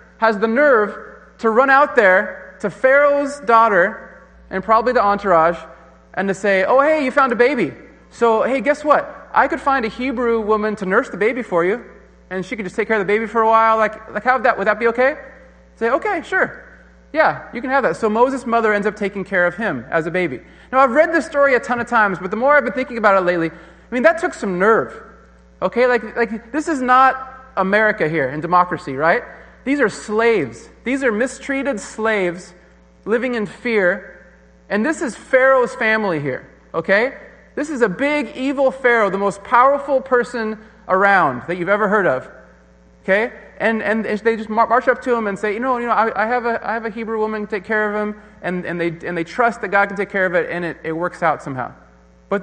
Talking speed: 225 wpm